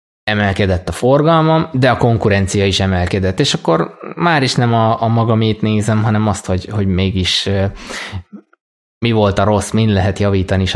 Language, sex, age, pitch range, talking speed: Hungarian, male, 20-39, 95-115 Hz, 175 wpm